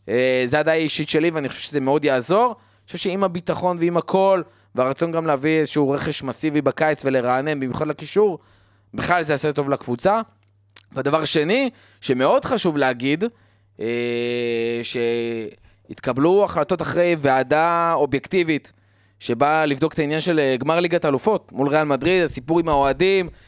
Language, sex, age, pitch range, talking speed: Hebrew, male, 20-39, 125-160 Hz, 145 wpm